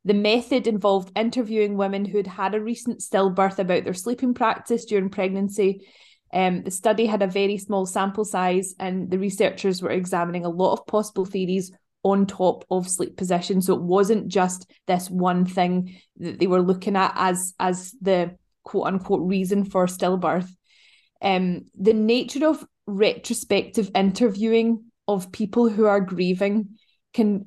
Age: 20-39